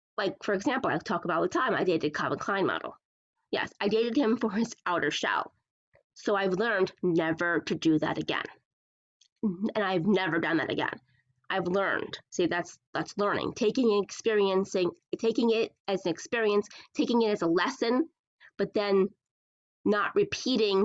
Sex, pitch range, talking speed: female, 190-295 Hz, 165 wpm